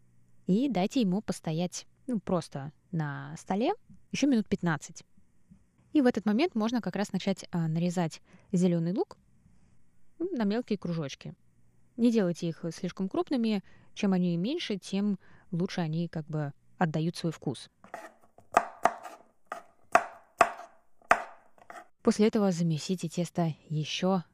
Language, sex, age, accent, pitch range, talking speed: Russian, female, 20-39, native, 155-205 Hz, 115 wpm